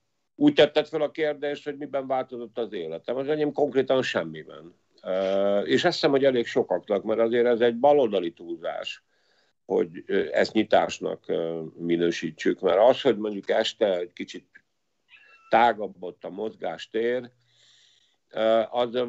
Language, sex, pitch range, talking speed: Hungarian, male, 100-145 Hz, 130 wpm